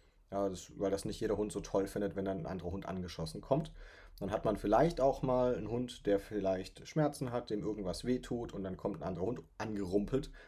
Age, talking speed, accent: 30-49, 210 wpm, German